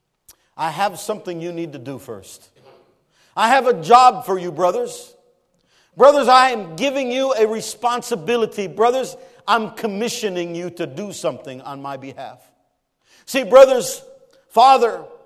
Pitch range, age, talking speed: 170-265 Hz, 50-69, 140 wpm